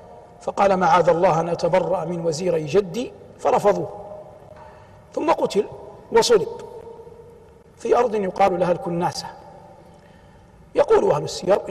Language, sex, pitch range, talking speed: Arabic, male, 180-280 Hz, 100 wpm